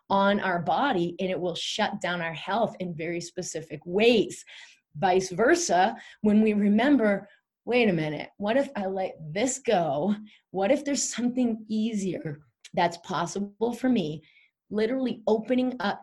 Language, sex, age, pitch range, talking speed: English, female, 30-49, 165-210 Hz, 150 wpm